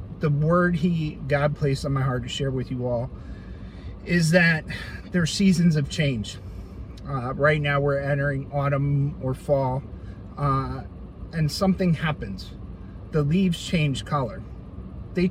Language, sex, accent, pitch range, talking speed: English, male, American, 125-165 Hz, 145 wpm